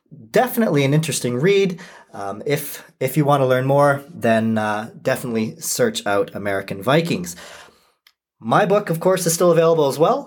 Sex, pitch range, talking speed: male, 120-170 Hz, 165 wpm